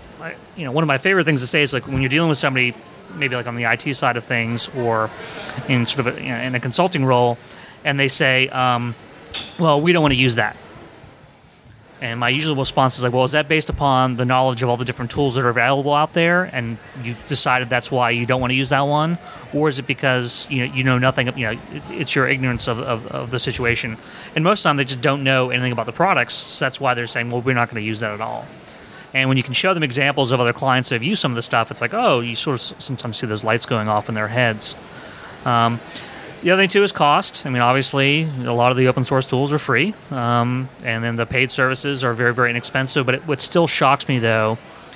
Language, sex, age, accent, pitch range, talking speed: English, male, 30-49, American, 120-140 Hz, 260 wpm